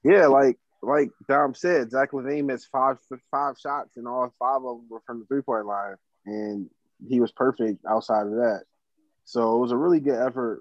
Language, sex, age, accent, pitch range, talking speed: English, male, 20-39, American, 110-125 Hz, 200 wpm